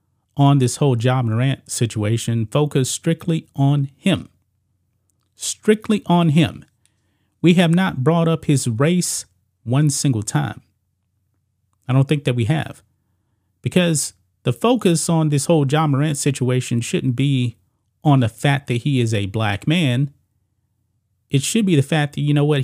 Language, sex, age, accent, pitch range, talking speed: English, male, 30-49, American, 105-155 Hz, 160 wpm